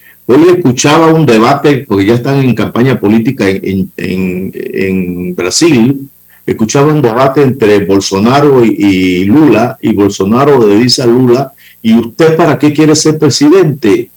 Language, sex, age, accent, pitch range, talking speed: Spanish, male, 50-69, Venezuelan, 95-145 Hz, 150 wpm